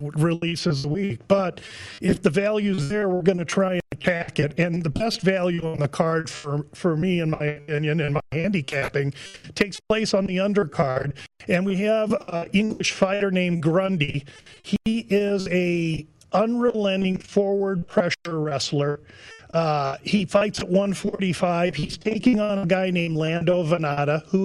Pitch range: 155-190 Hz